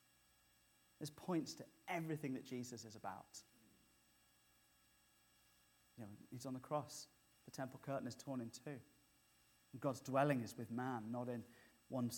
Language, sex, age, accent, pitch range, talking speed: English, male, 30-49, British, 120-160 Hz, 150 wpm